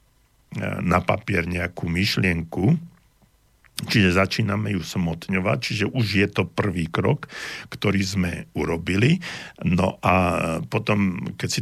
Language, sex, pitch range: Slovak, male, 90-110 Hz